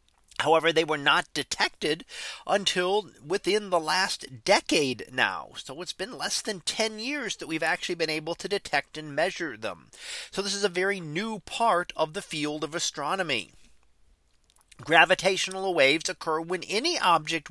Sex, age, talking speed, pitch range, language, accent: male, 40-59, 160 wpm, 155-210 Hz, English, American